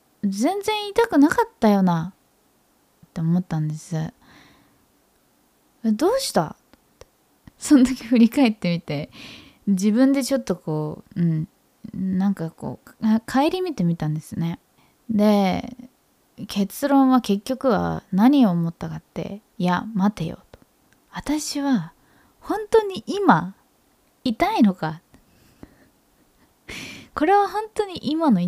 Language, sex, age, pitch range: Japanese, female, 20-39, 180-275 Hz